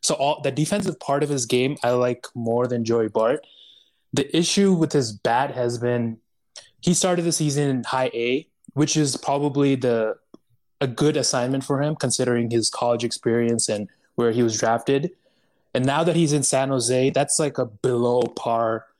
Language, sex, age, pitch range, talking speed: English, male, 20-39, 120-145 Hz, 185 wpm